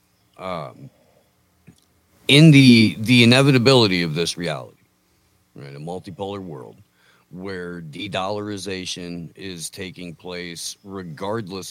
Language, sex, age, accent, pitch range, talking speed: English, male, 40-59, American, 75-90 Hz, 90 wpm